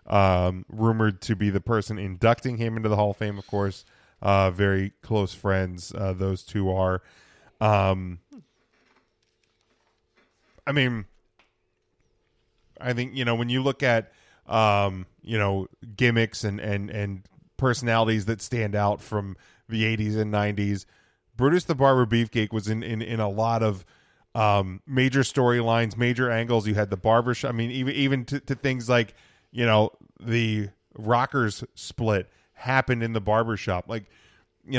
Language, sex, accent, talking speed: English, male, American, 155 wpm